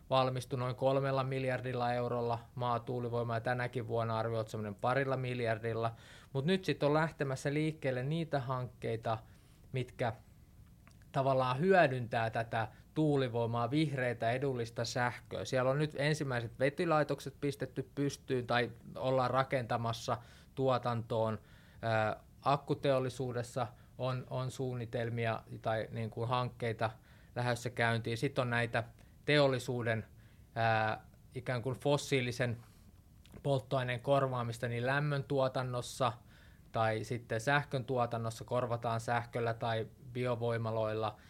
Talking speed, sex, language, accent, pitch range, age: 105 wpm, male, Finnish, native, 115-135 Hz, 20-39